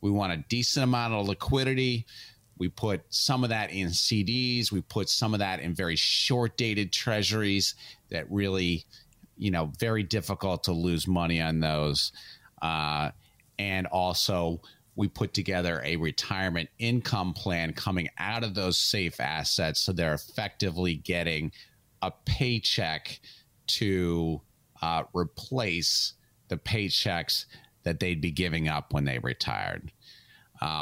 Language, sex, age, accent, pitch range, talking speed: English, male, 40-59, American, 85-120 Hz, 135 wpm